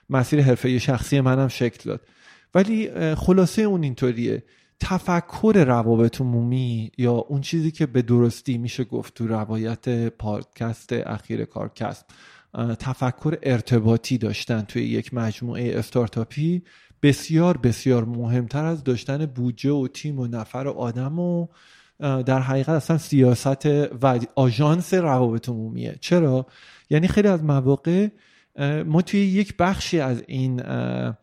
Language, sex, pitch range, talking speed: Persian, male, 120-155 Hz, 125 wpm